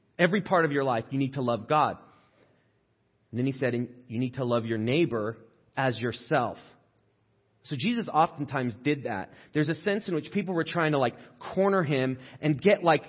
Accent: American